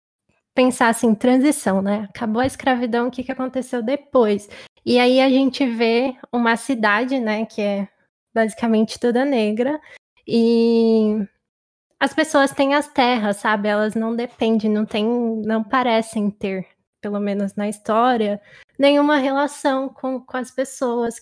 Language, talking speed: Portuguese, 140 wpm